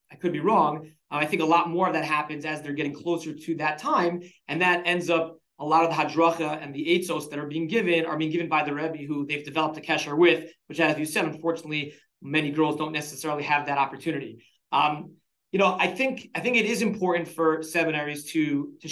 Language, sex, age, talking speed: English, male, 30-49, 235 wpm